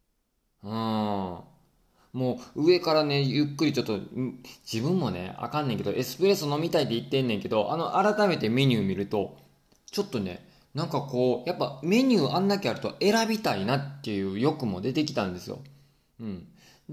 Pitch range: 105-165 Hz